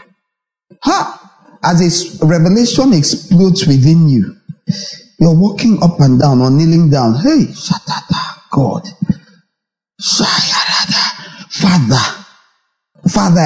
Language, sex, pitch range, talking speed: English, male, 165-205 Hz, 85 wpm